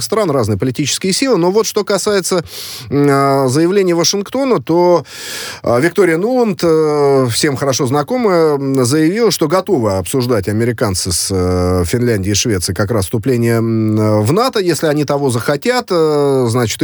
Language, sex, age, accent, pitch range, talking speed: Russian, male, 30-49, native, 120-170 Hz, 145 wpm